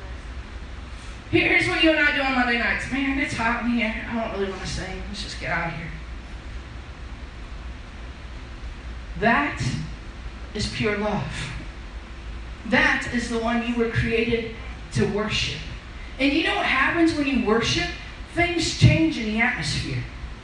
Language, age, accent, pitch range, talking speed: English, 40-59, American, 200-330 Hz, 155 wpm